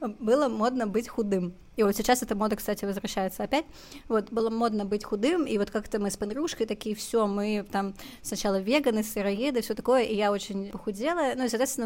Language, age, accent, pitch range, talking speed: Russian, 20-39, native, 200-235 Hz, 195 wpm